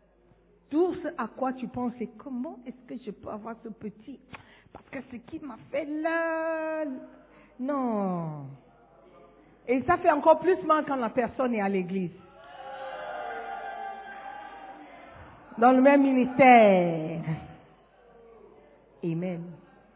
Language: French